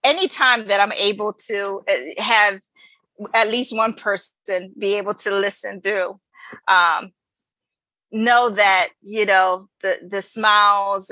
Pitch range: 185-210 Hz